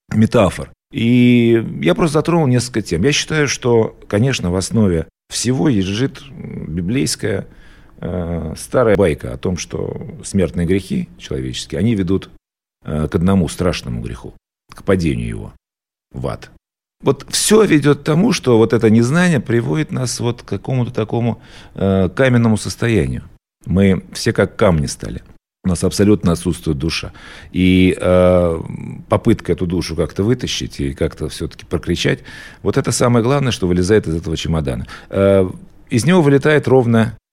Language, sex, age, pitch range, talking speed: Russian, male, 50-69, 85-125 Hz, 145 wpm